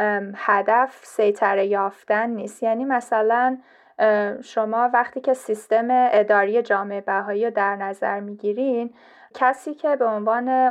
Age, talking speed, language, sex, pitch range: 10-29, 110 wpm, Persian, female, 215-260 Hz